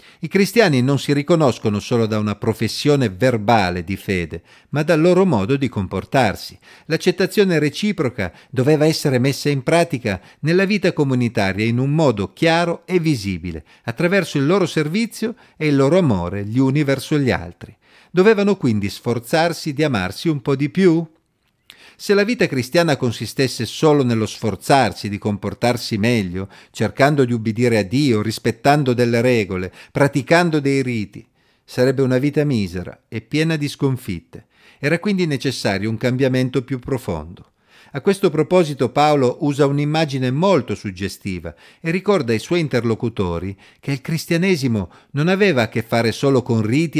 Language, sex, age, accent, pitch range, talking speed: Italian, male, 50-69, native, 115-155 Hz, 150 wpm